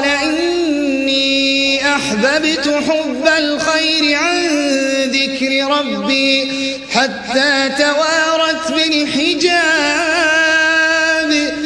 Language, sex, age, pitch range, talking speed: Arabic, male, 30-49, 275-320 Hz, 55 wpm